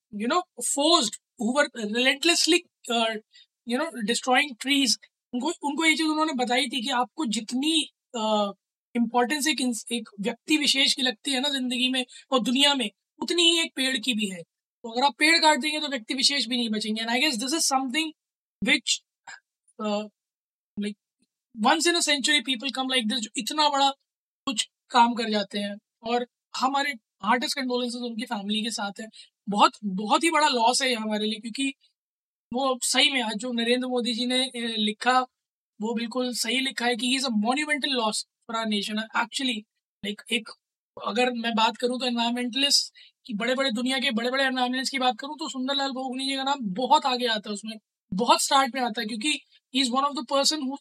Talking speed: 150 wpm